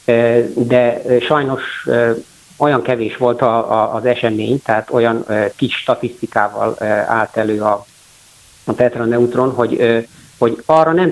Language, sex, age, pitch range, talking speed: Hungarian, male, 50-69, 110-145 Hz, 125 wpm